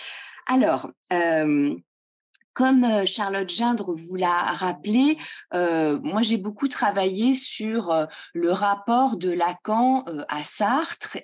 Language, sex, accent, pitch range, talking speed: French, female, French, 165-255 Hz, 105 wpm